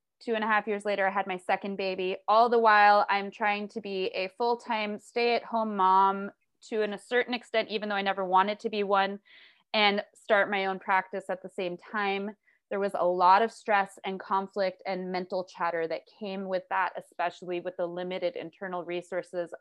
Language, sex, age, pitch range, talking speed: English, female, 20-39, 180-210 Hz, 195 wpm